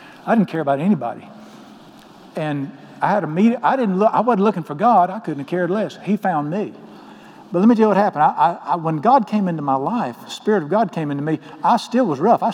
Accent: American